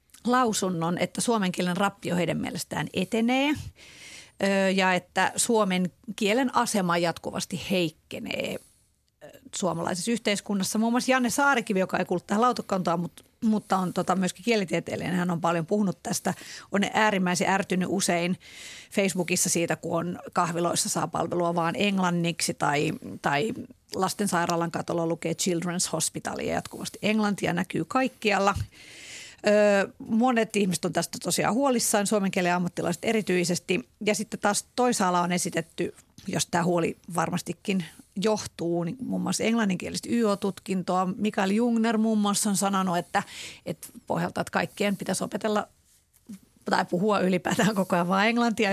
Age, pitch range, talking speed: 40-59, 175-215 Hz, 125 wpm